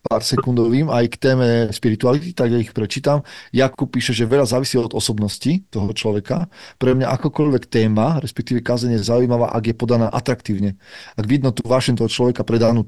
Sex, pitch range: male, 115-130 Hz